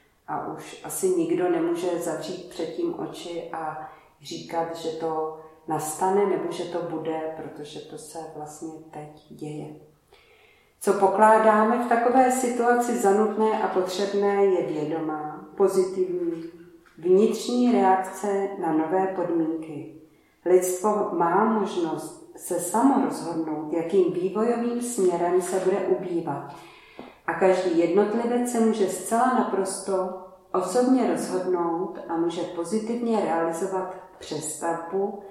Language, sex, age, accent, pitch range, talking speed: Czech, female, 40-59, native, 165-210 Hz, 110 wpm